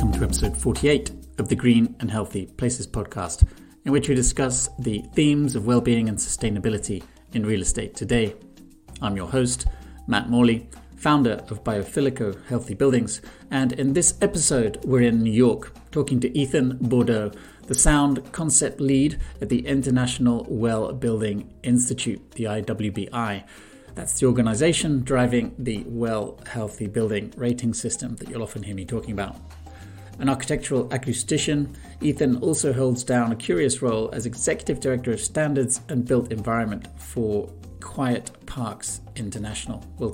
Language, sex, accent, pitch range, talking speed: English, male, British, 110-135 Hz, 145 wpm